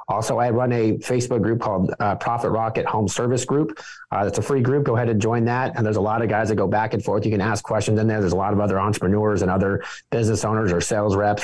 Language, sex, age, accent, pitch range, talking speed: English, male, 30-49, American, 105-125 Hz, 280 wpm